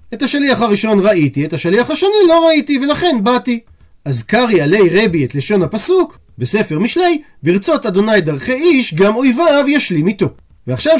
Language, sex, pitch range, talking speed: Hebrew, male, 175-250 Hz, 160 wpm